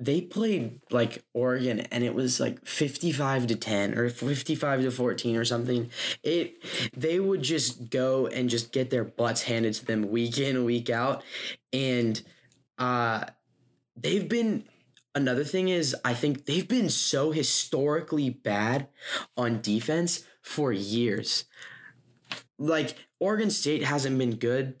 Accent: American